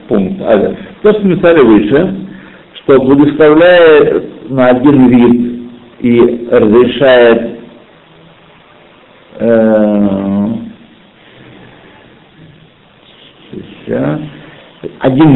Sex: male